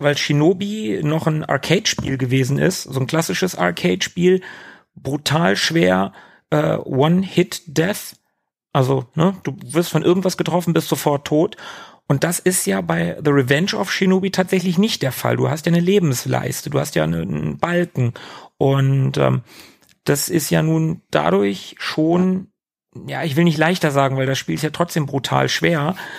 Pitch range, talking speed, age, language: 135-175 Hz, 160 wpm, 40-59, German